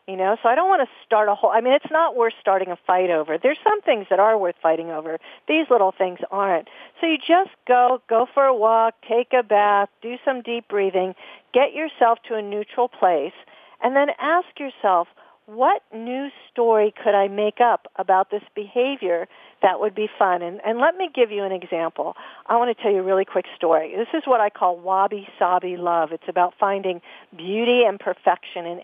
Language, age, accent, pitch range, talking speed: English, 50-69, American, 190-245 Hz, 210 wpm